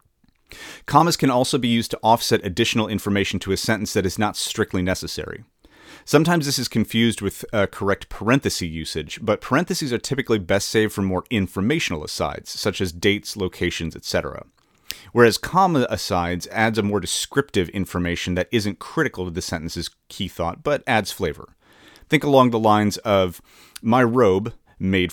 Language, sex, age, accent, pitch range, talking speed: English, male, 30-49, American, 95-120 Hz, 160 wpm